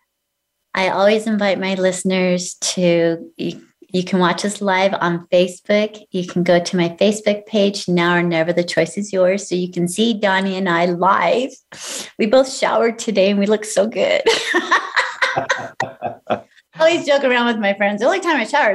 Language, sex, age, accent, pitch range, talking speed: English, female, 30-49, American, 185-260 Hz, 180 wpm